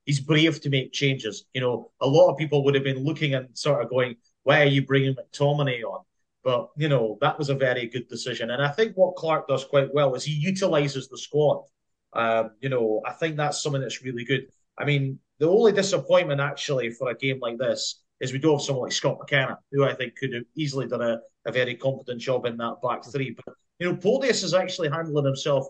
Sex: male